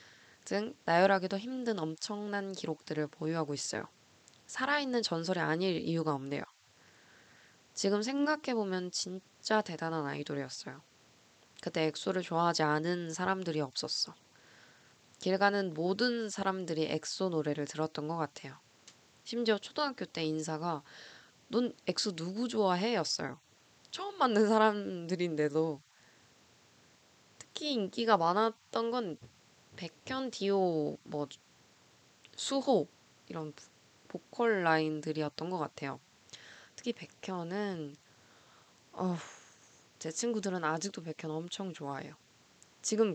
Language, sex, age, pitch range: Korean, female, 20-39, 155-220 Hz